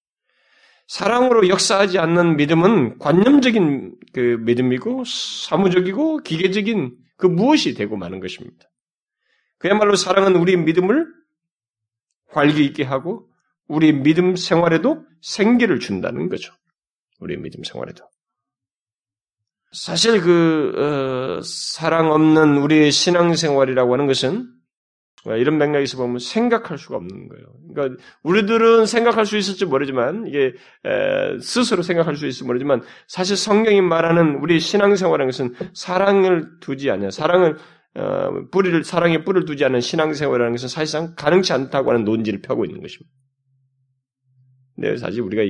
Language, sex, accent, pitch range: Korean, male, native, 130-190 Hz